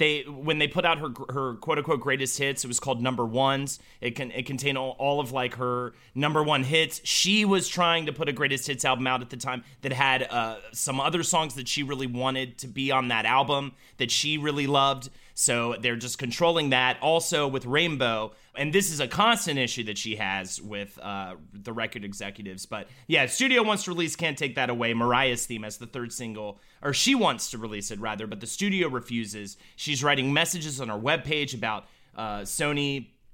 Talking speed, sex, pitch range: 210 wpm, male, 120-155 Hz